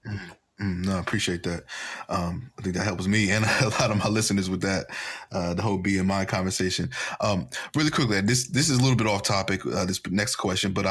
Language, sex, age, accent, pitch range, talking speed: English, male, 20-39, American, 95-105 Hz, 230 wpm